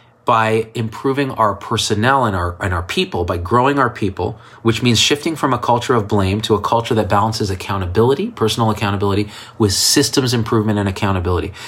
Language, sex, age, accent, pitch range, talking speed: English, male, 30-49, American, 100-130 Hz, 175 wpm